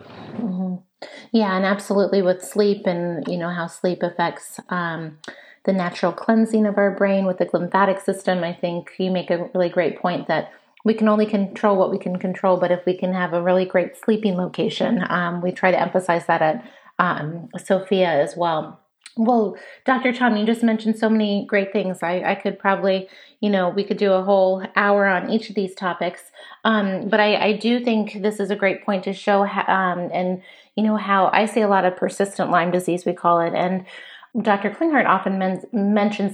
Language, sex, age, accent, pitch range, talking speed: English, female, 30-49, American, 175-205 Hz, 200 wpm